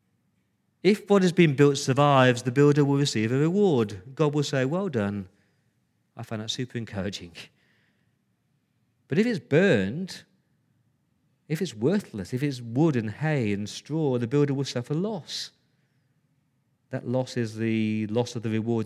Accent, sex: British, male